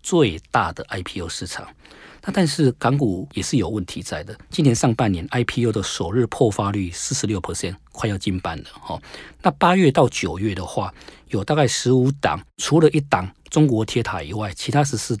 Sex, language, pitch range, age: male, Chinese, 95-140 Hz, 40-59